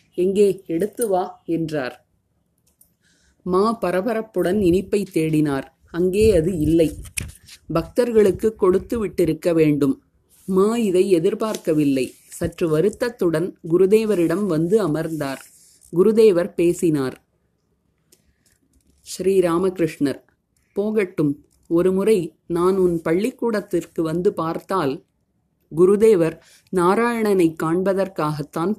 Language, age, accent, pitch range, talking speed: Tamil, 30-49, native, 160-195 Hz, 75 wpm